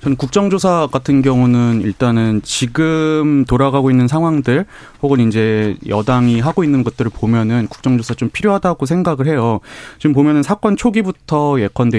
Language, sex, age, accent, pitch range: Korean, male, 30-49, native, 110-140 Hz